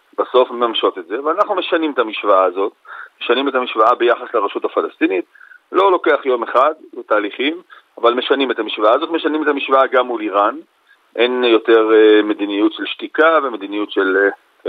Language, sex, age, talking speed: Hebrew, male, 40-59, 160 wpm